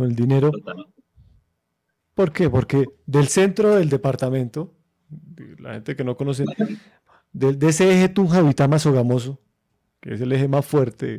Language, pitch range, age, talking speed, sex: Spanish, 125-155 Hz, 30-49, 140 wpm, male